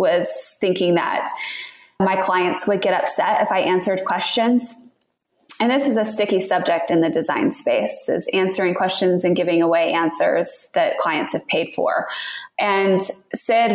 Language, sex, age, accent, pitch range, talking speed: English, female, 20-39, American, 180-240 Hz, 155 wpm